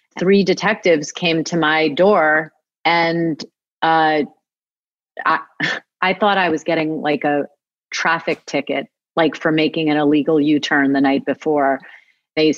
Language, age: English, 30-49